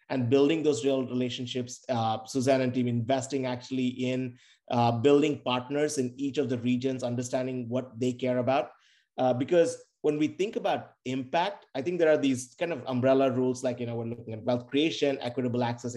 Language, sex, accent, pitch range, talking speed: English, male, Indian, 125-145 Hz, 190 wpm